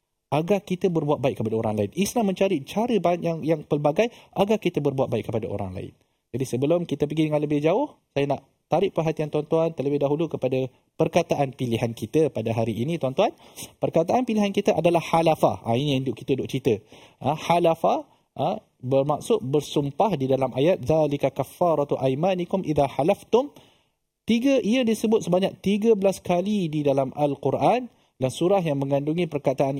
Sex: male